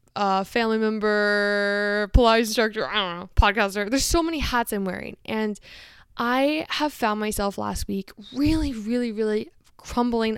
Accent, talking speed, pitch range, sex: American, 150 wpm, 200-245 Hz, female